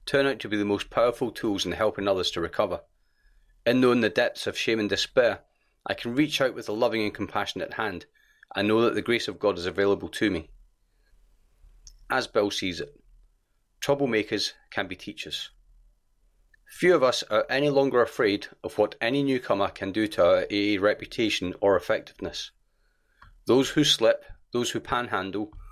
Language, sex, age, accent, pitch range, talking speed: English, male, 40-59, British, 100-125 Hz, 175 wpm